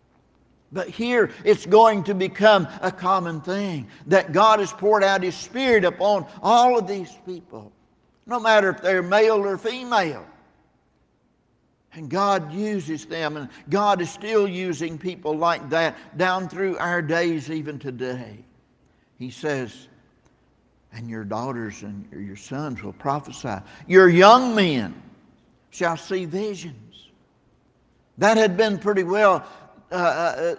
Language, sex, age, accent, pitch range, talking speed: English, male, 60-79, American, 145-200 Hz, 135 wpm